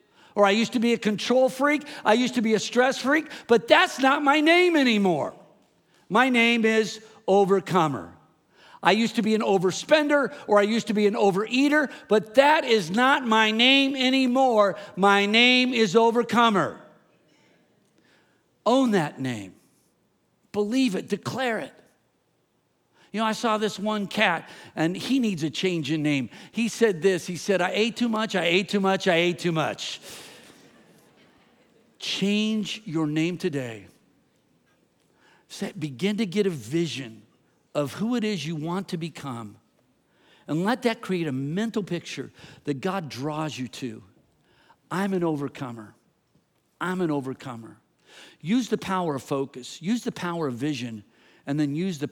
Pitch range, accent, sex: 145-225 Hz, American, male